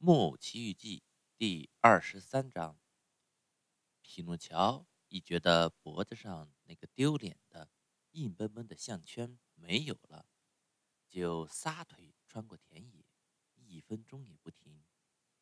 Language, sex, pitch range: Chinese, male, 85-145 Hz